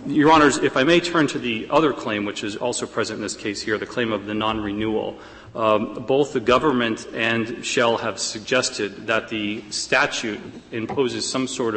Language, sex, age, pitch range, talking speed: English, male, 40-59, 105-115 Hz, 185 wpm